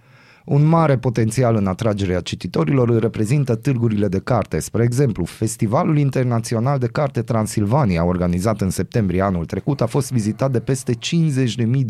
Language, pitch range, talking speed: Romanian, 105-135 Hz, 145 wpm